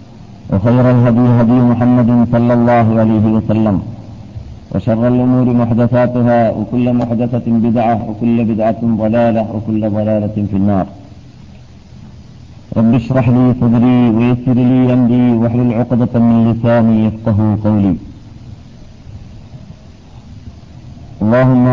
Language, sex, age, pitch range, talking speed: Malayalam, male, 50-69, 110-125 Hz, 100 wpm